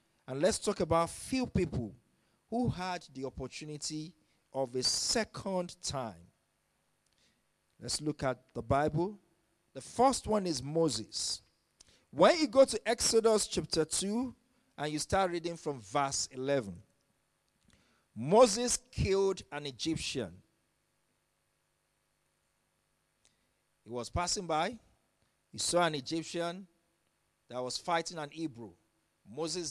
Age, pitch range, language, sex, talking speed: 50-69, 130-180 Hz, English, male, 115 wpm